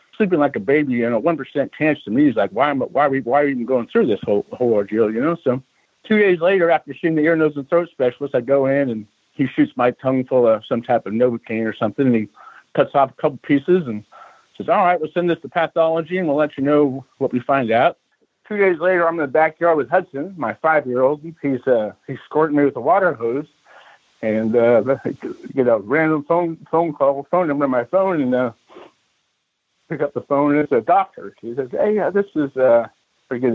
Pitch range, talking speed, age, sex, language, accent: 125-170 Hz, 240 wpm, 60-79, male, English, American